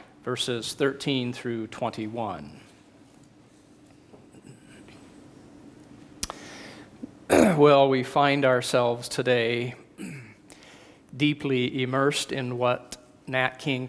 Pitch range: 125-145 Hz